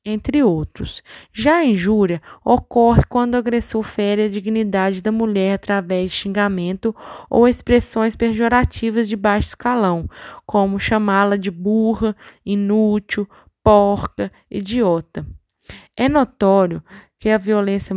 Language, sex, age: Portuguese, female, 20-39